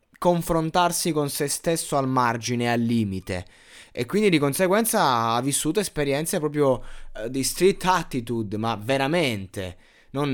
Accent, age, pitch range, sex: native, 20-39, 115-160 Hz, male